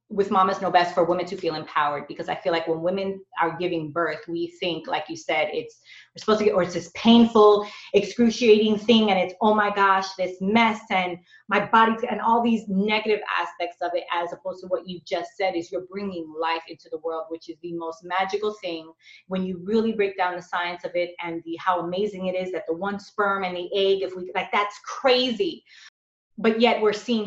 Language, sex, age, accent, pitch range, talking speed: English, female, 30-49, American, 175-220 Hz, 225 wpm